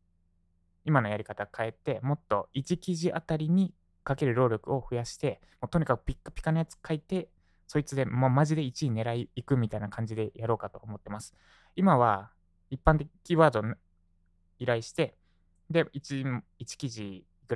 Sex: male